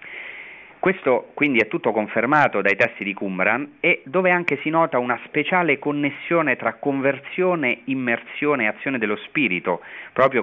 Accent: native